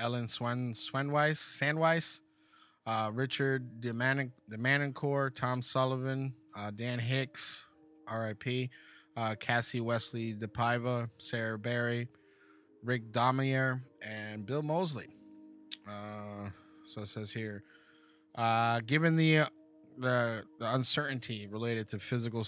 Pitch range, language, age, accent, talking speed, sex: 110-130 Hz, English, 20-39, American, 110 wpm, male